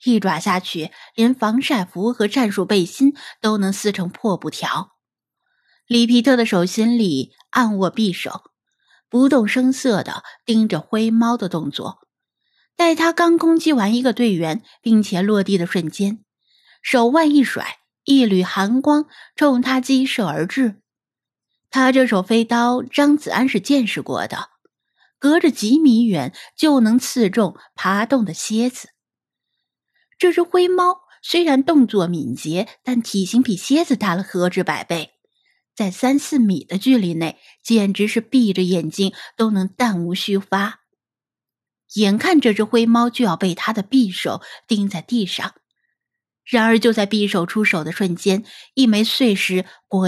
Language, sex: Chinese, female